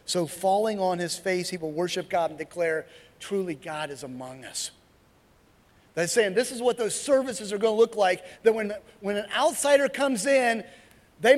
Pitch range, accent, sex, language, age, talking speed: 165-250 Hz, American, male, English, 40-59, 190 wpm